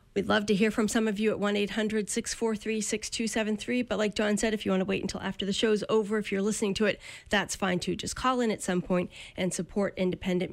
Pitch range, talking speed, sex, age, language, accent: 185-215 Hz, 235 wpm, female, 40-59, English, American